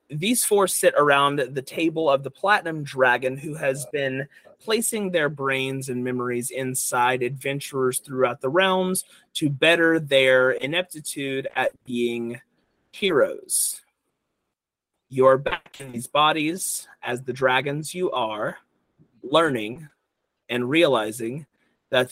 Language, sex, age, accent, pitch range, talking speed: English, male, 30-49, American, 125-185 Hz, 120 wpm